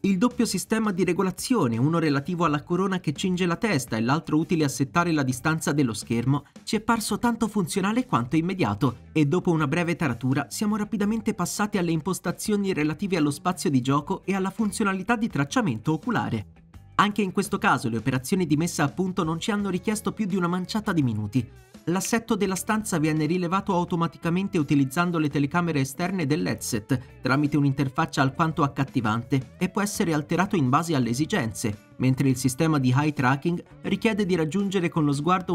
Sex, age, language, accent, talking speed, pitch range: male, 30-49, Italian, native, 175 wpm, 145-195 Hz